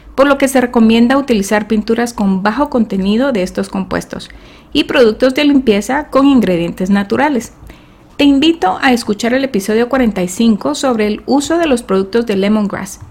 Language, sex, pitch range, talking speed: Spanish, female, 210-270 Hz, 160 wpm